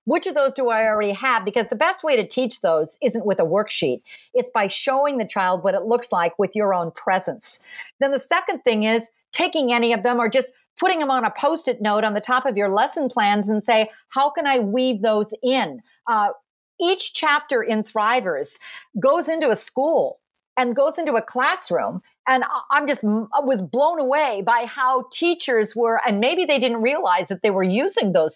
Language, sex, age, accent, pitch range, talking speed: English, female, 50-69, American, 220-295 Hz, 205 wpm